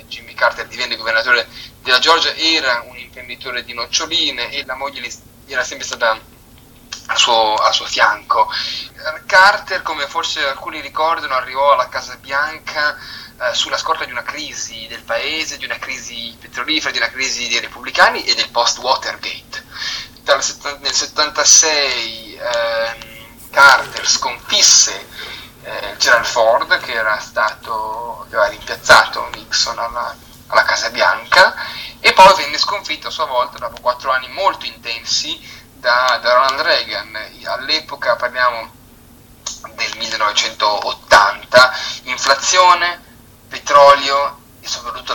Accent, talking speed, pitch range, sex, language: native, 120 wpm, 115-155 Hz, male, Italian